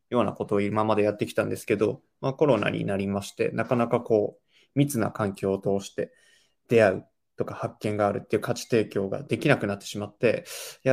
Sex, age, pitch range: male, 20-39, 105-130 Hz